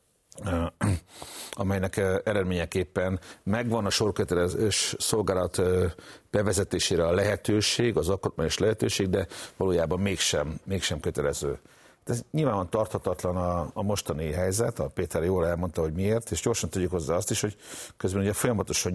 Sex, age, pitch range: male, 60-79, 85-105 Hz